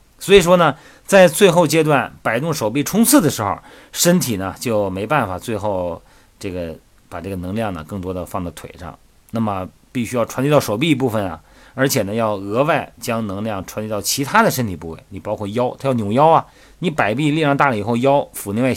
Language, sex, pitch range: Chinese, male, 90-135 Hz